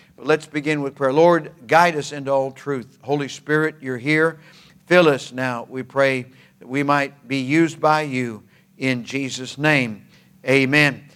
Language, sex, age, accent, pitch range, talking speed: English, male, 50-69, American, 150-180 Hz, 160 wpm